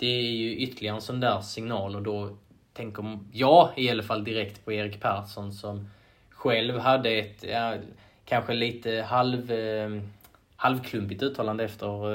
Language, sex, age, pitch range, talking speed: Swedish, male, 20-39, 105-115 Hz, 160 wpm